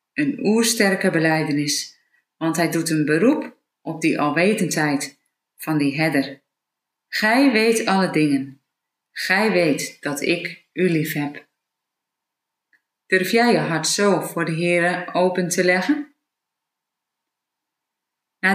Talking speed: 120 wpm